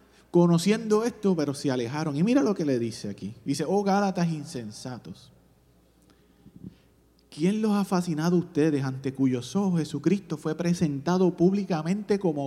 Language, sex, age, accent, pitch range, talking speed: English, male, 30-49, Venezuelan, 115-195 Hz, 145 wpm